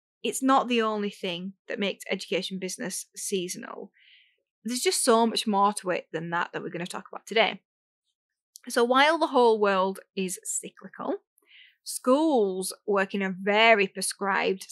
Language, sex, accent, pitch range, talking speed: English, female, British, 200-270 Hz, 160 wpm